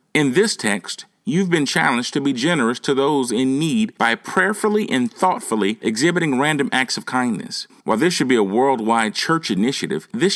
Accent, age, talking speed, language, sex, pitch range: American, 40-59, 180 wpm, English, male, 125-185 Hz